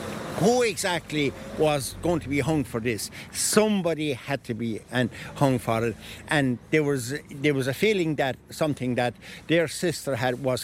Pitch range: 125-170 Hz